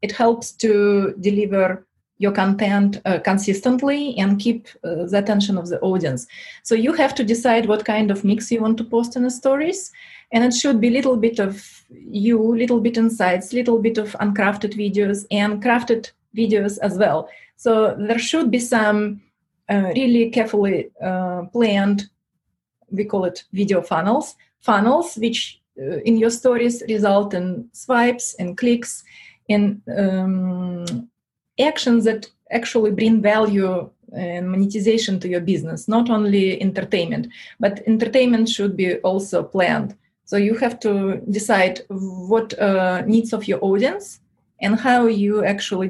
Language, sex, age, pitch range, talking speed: English, female, 30-49, 190-230 Hz, 150 wpm